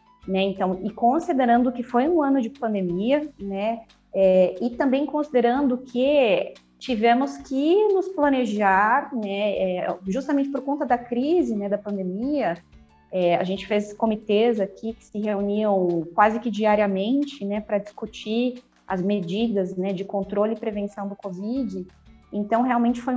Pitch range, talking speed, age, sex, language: 195-250 Hz, 150 wpm, 20-39, female, Portuguese